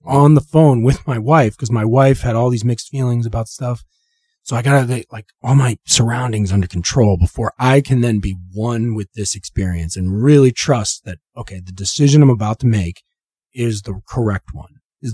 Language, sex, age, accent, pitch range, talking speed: English, male, 30-49, American, 100-135 Hz, 200 wpm